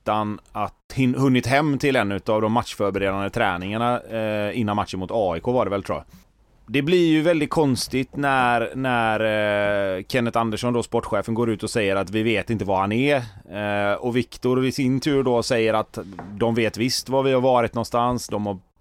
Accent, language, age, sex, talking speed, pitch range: native, Swedish, 30-49, male, 200 wpm, 105-130 Hz